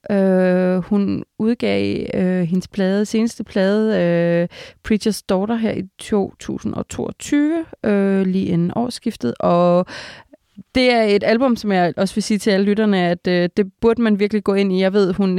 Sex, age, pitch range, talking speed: female, 20-39, 180-220 Hz, 170 wpm